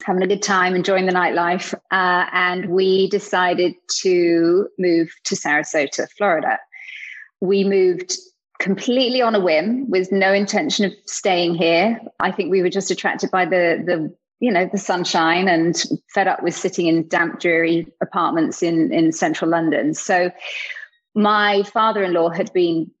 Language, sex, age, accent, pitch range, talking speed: English, female, 30-49, British, 175-225 Hz, 160 wpm